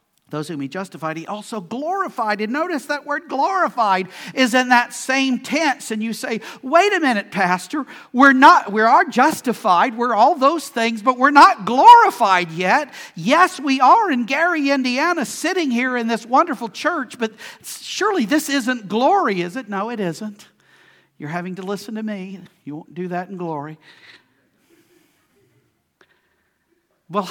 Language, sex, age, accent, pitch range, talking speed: English, male, 50-69, American, 170-265 Hz, 160 wpm